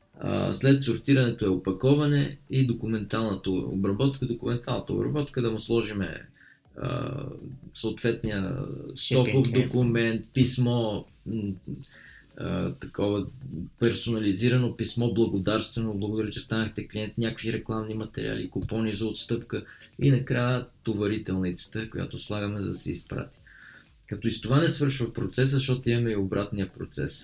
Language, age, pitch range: Bulgarian, 20-39, 105-130 Hz